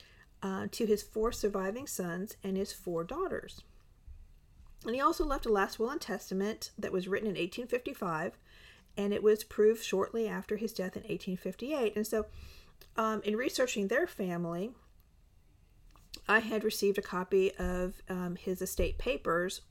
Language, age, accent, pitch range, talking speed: English, 50-69, American, 185-220 Hz, 155 wpm